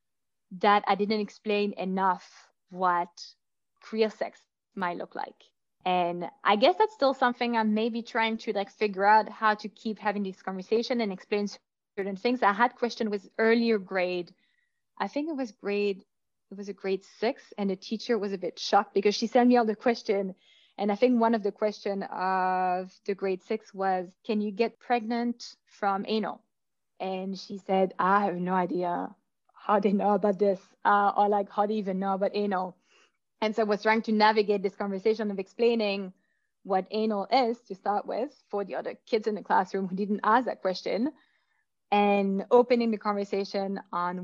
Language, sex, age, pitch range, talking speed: English, female, 20-39, 195-225 Hz, 185 wpm